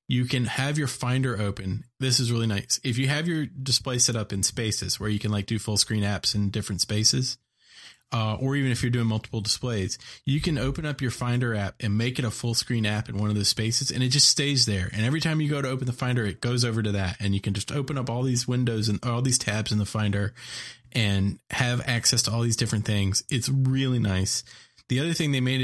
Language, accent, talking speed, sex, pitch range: English, American, 255 wpm, male, 105-125 Hz